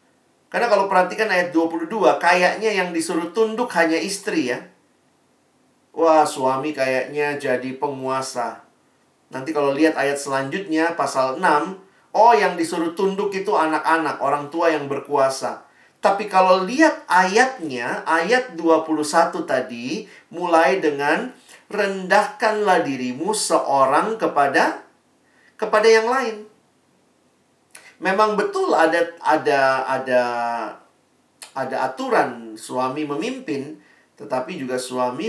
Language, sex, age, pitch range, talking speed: Indonesian, male, 40-59, 140-205 Hz, 105 wpm